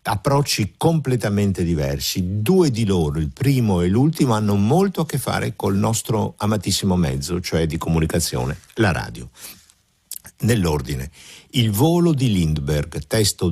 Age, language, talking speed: 60-79, Italian, 135 wpm